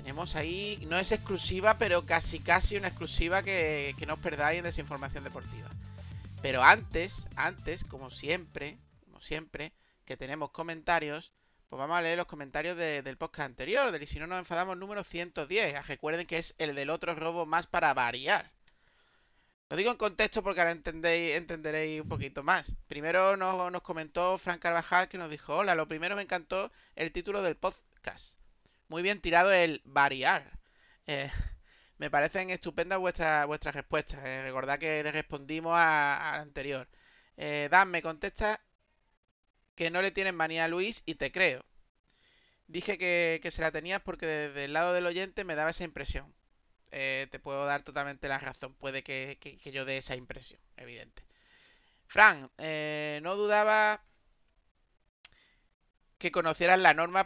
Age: 30-49